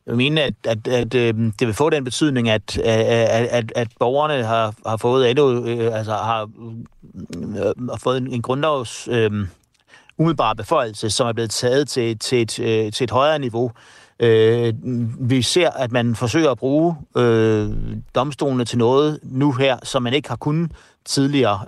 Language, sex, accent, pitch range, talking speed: Danish, male, native, 115-135 Hz, 145 wpm